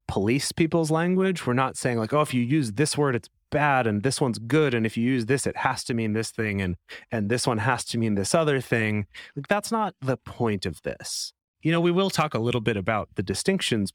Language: English